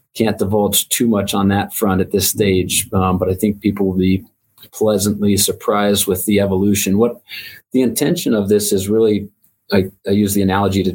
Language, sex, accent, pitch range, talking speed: English, male, American, 95-105 Hz, 190 wpm